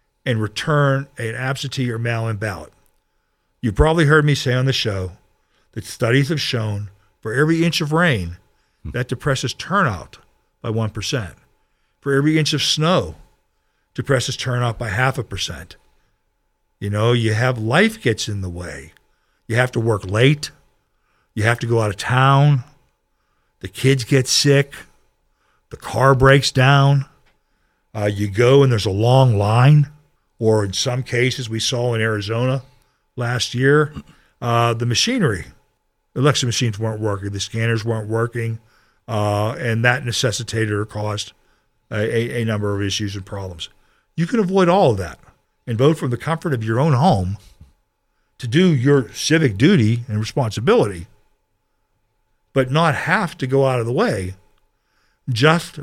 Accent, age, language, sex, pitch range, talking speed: American, 50-69, English, male, 110-135 Hz, 155 wpm